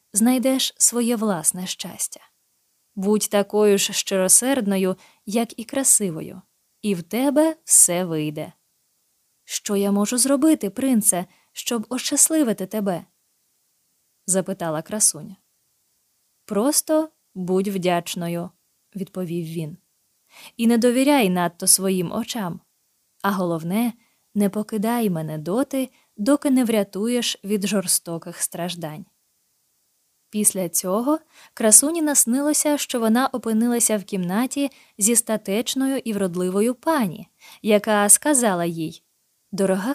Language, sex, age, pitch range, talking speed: Ukrainian, female, 20-39, 185-250 Hz, 100 wpm